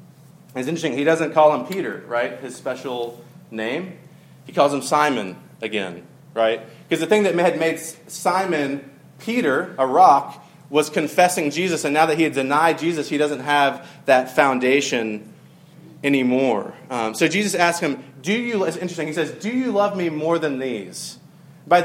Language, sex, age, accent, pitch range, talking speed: English, male, 30-49, American, 135-165 Hz, 170 wpm